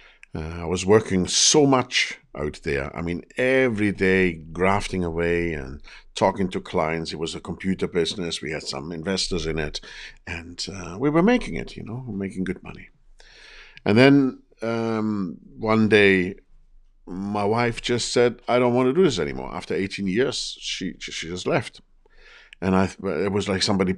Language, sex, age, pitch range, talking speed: English, male, 50-69, 80-105 Hz, 175 wpm